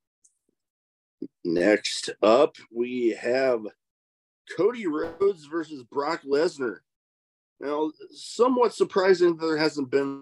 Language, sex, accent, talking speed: English, male, American, 90 wpm